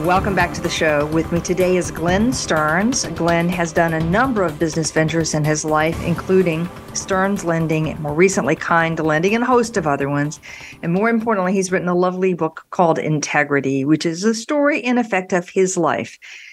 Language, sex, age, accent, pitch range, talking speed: English, female, 50-69, American, 160-195 Hz, 200 wpm